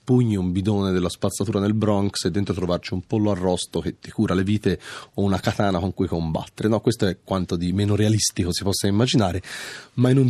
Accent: native